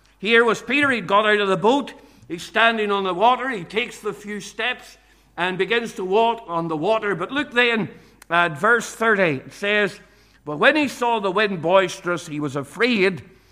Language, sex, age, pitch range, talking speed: English, male, 60-79, 190-240 Hz, 200 wpm